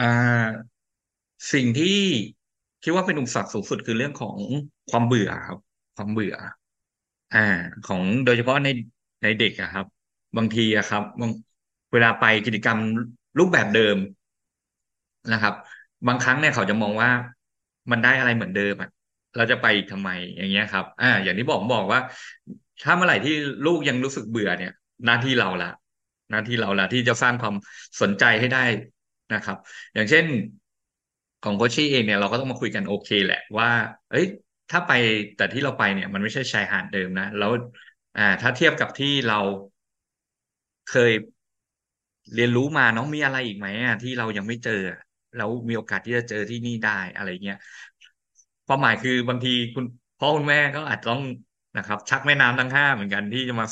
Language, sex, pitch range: Thai, male, 105-125 Hz